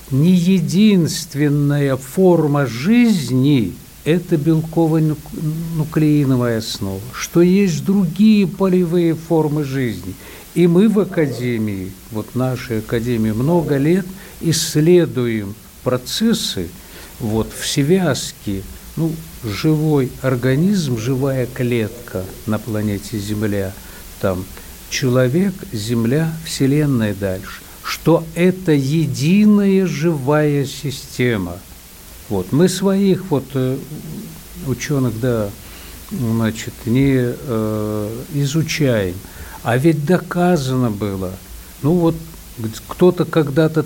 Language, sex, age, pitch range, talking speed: Russian, male, 60-79, 115-165 Hz, 85 wpm